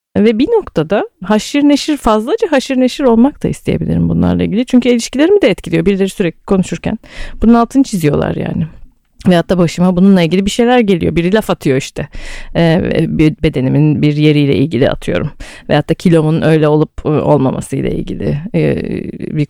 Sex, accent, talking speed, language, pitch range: female, native, 160 wpm, Turkish, 160-215 Hz